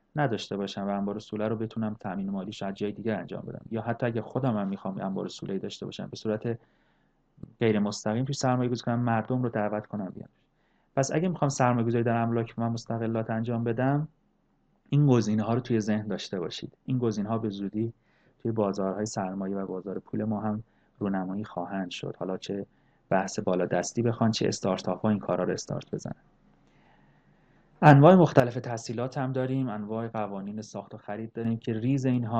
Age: 30-49